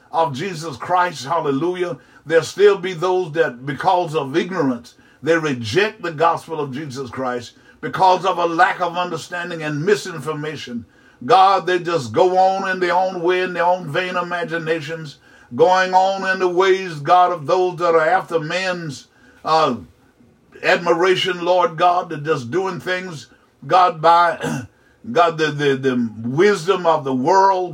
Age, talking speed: 60-79, 155 wpm